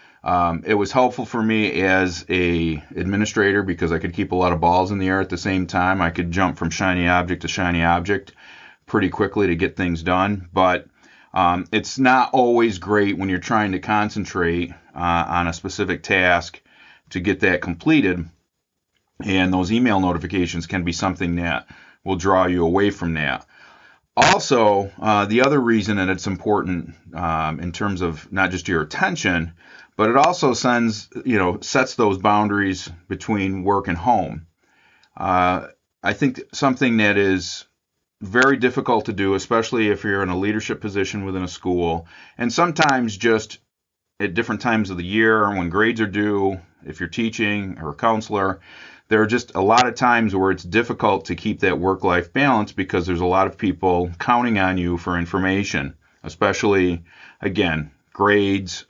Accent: American